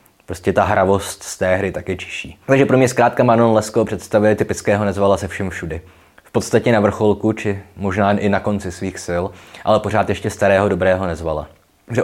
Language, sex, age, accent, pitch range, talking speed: Czech, male, 20-39, native, 95-115 Hz, 190 wpm